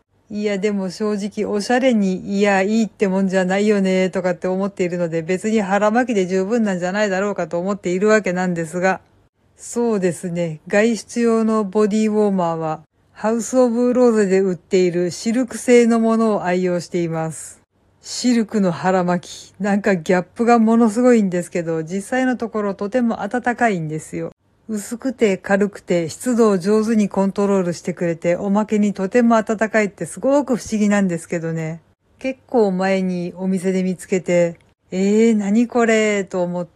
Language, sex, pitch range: Japanese, female, 180-225 Hz